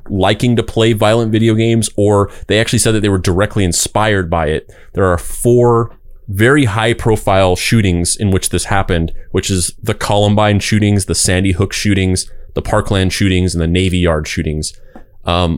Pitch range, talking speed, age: 90-115 Hz, 175 wpm, 30-49